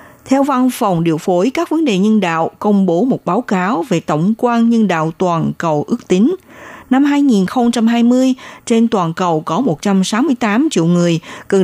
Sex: female